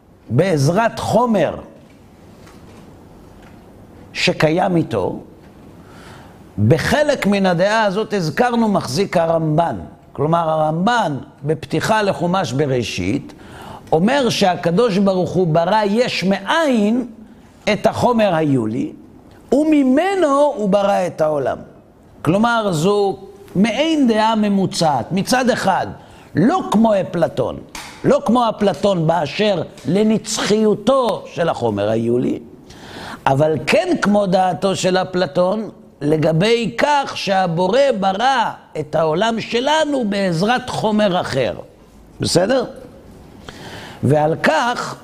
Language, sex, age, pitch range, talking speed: Hebrew, male, 60-79, 160-225 Hz, 90 wpm